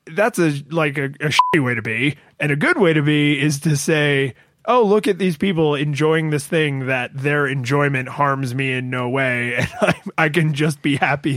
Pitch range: 130-160 Hz